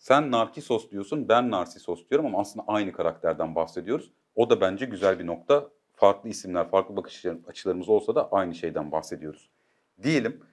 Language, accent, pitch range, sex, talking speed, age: Turkish, native, 100-130 Hz, male, 160 wpm, 40-59